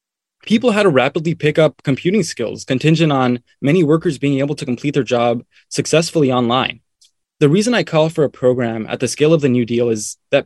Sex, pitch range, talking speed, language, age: male, 120-155 Hz, 205 wpm, English, 20-39